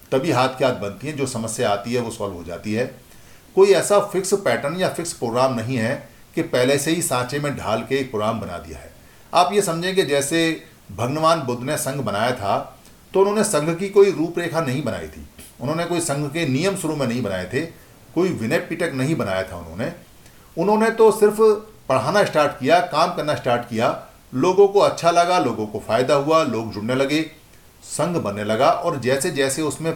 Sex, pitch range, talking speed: male, 115-165 Hz, 205 wpm